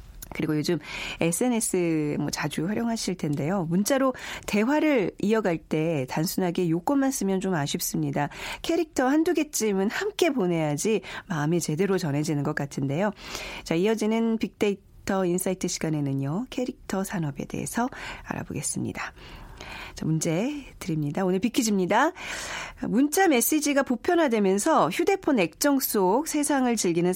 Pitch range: 160-255 Hz